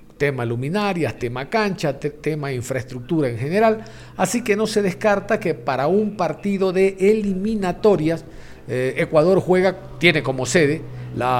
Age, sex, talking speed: 50-69, male, 135 wpm